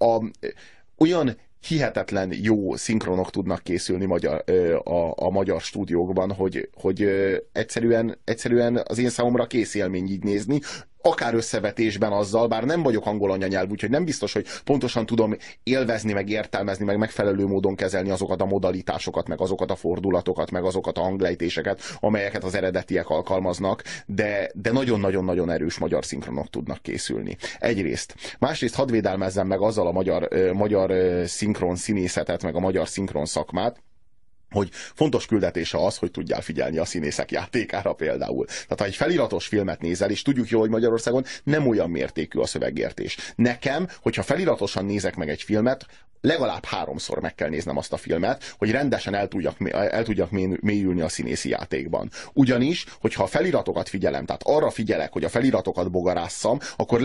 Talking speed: 155 wpm